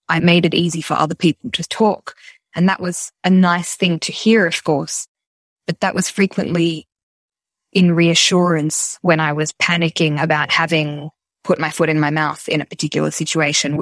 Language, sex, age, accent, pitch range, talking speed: English, female, 10-29, Australian, 150-175 Hz, 180 wpm